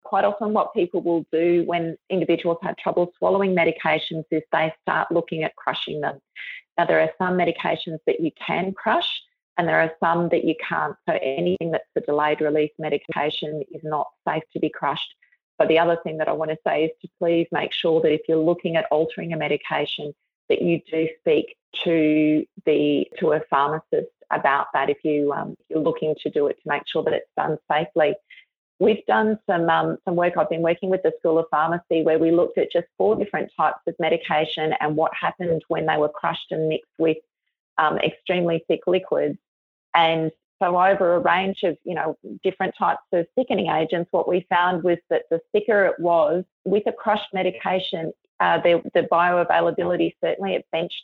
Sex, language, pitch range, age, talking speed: female, English, 160-185 Hz, 30-49, 195 wpm